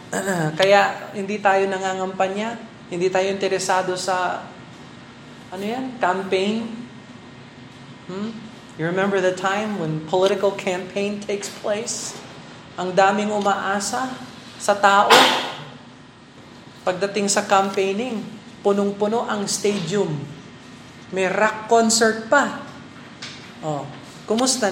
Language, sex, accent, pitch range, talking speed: Filipino, male, native, 160-205 Hz, 90 wpm